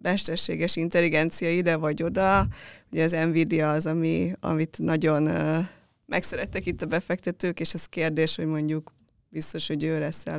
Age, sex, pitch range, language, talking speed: 20-39, female, 155-180 Hz, Hungarian, 155 wpm